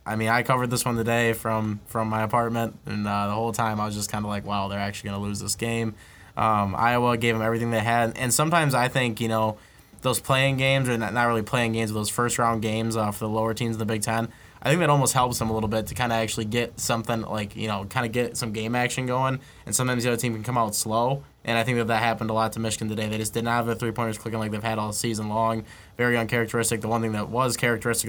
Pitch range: 110-115 Hz